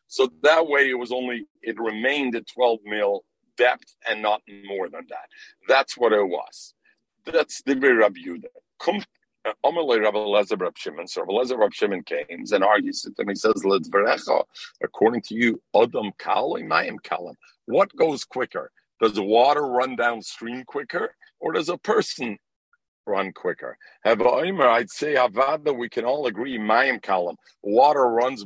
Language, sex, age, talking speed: English, male, 50-69, 130 wpm